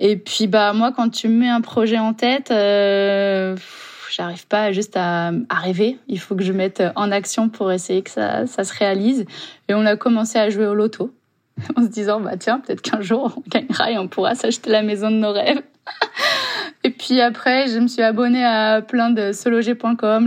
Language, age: French, 20-39